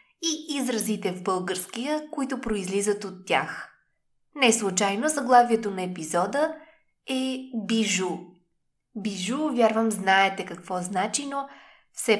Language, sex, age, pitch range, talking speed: Bulgarian, female, 20-39, 185-250 Hz, 105 wpm